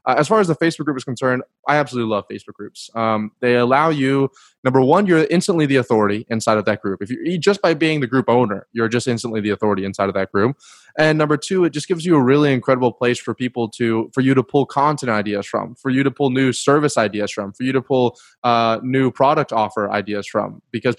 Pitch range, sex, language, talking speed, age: 115-140 Hz, male, English, 245 wpm, 20-39